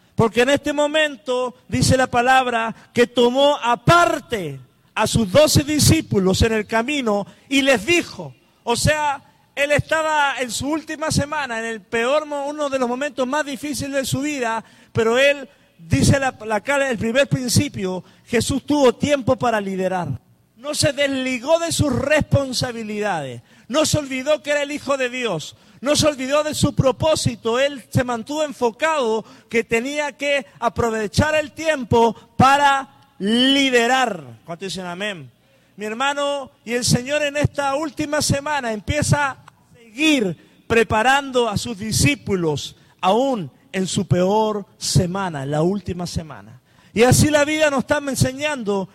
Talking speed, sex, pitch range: 145 wpm, male, 195-285 Hz